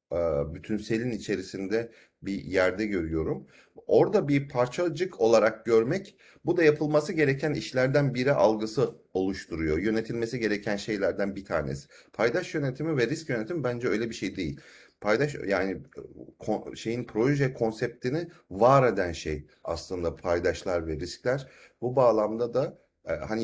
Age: 40-59